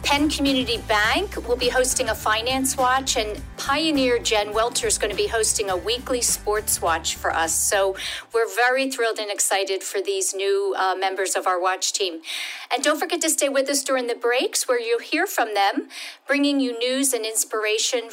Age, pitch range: 50-69, 210-290 Hz